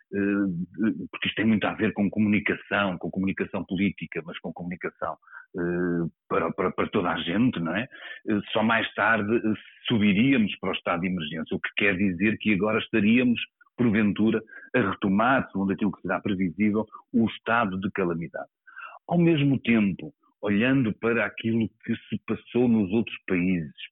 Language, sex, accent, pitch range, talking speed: Portuguese, male, Portuguese, 95-115 Hz, 155 wpm